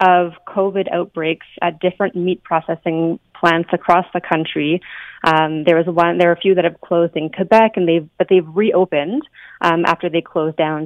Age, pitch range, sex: 30-49, 160-180 Hz, female